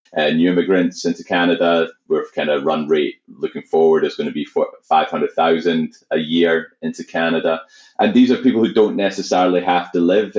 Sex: male